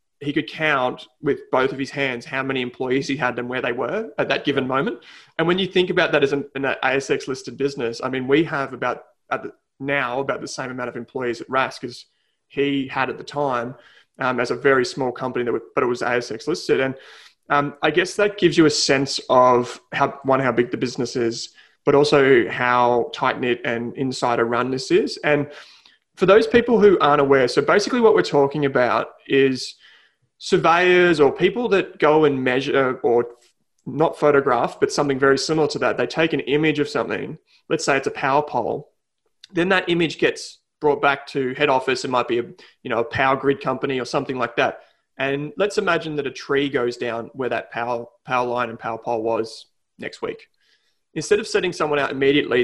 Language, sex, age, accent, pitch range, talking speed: English, male, 20-39, Australian, 125-150 Hz, 205 wpm